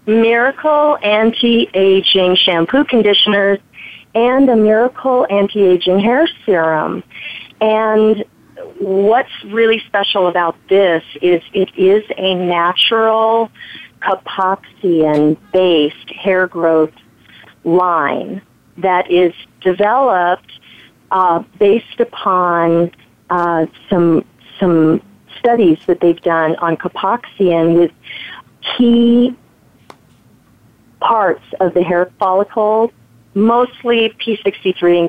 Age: 40-59